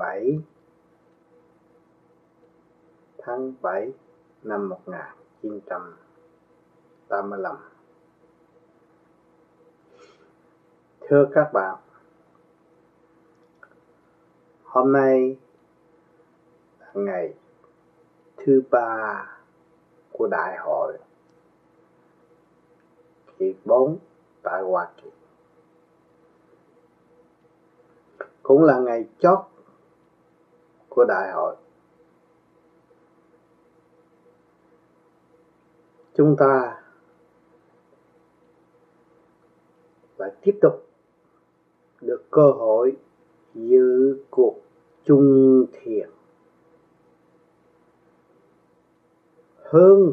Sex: male